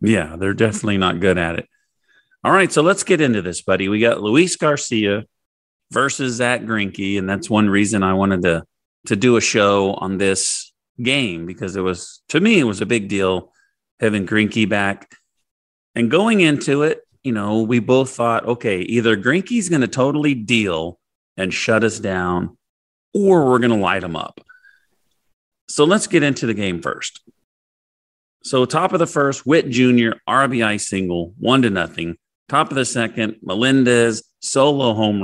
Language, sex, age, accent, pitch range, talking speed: English, male, 40-59, American, 100-130 Hz, 175 wpm